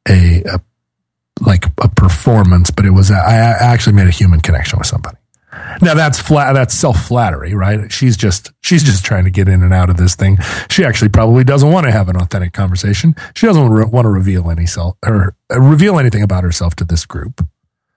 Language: English